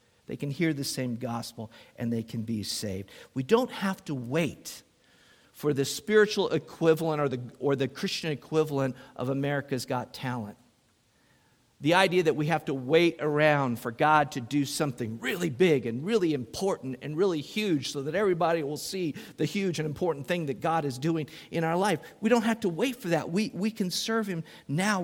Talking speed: 195 wpm